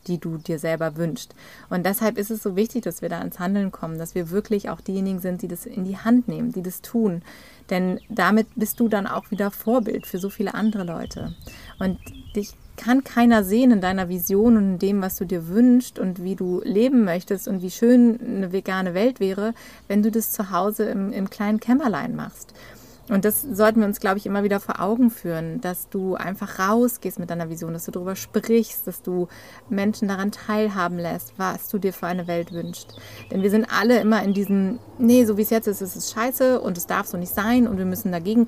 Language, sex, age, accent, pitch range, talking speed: German, female, 30-49, German, 185-225 Hz, 225 wpm